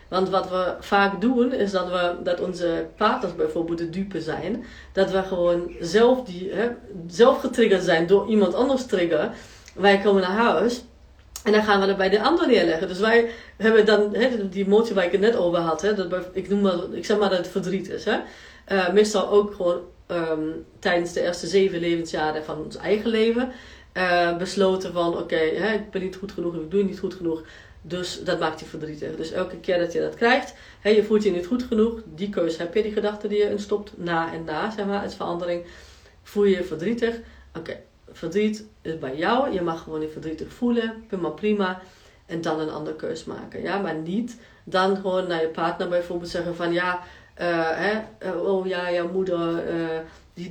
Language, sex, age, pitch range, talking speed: Dutch, female, 40-59, 170-210 Hz, 210 wpm